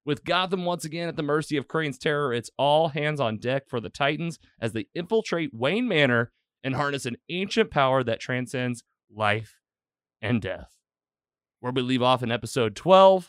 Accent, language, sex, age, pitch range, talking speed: American, English, male, 30-49, 110-150 Hz, 180 wpm